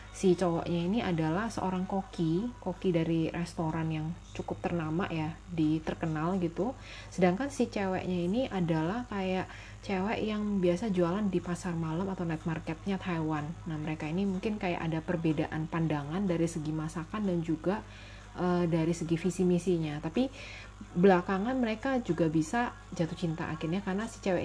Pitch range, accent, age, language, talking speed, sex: 160-195 Hz, native, 20-39, Indonesian, 145 wpm, female